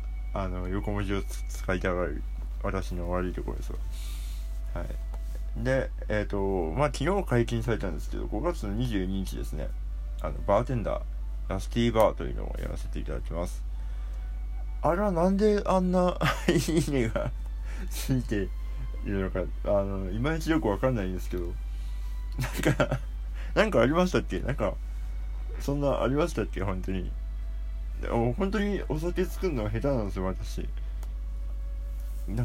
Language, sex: Japanese, male